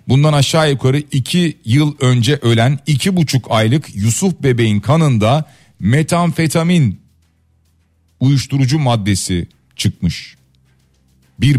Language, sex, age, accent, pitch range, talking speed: Turkish, male, 40-59, native, 110-145 Hz, 95 wpm